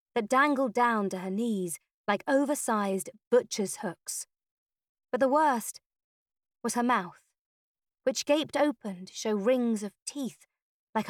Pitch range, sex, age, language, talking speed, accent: 200-265 Hz, female, 30-49, English, 135 wpm, British